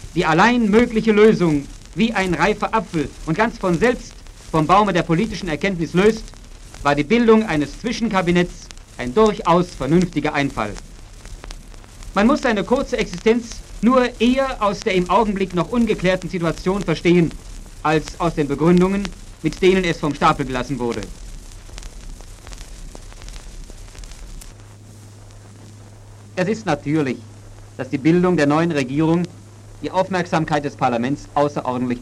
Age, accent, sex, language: 50-69, German, male, German